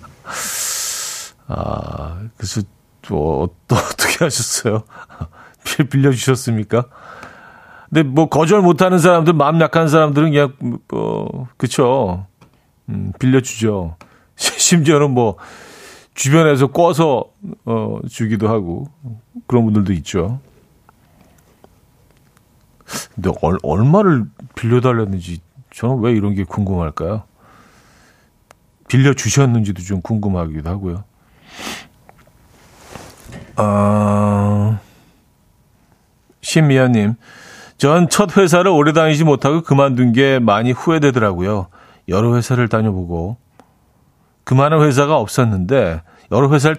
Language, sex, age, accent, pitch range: Korean, male, 40-59, native, 100-145 Hz